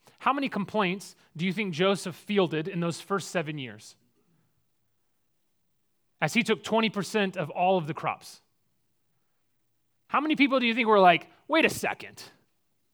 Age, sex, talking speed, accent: 30-49, male, 155 wpm, American